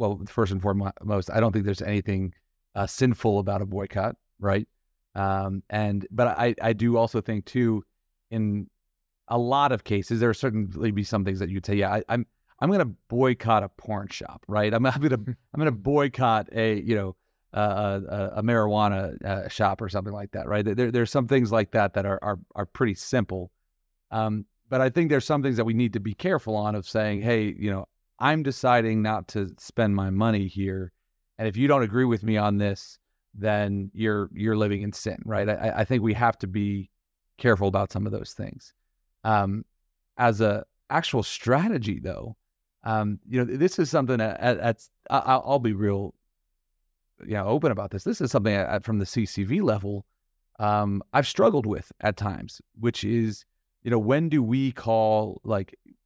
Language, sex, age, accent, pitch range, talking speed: English, male, 40-59, American, 100-115 Hz, 200 wpm